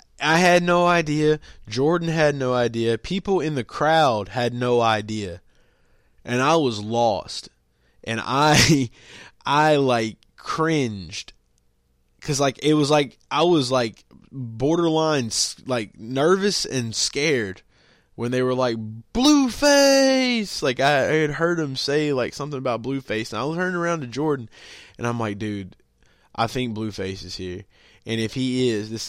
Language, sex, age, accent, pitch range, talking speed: English, male, 20-39, American, 105-135 Hz, 150 wpm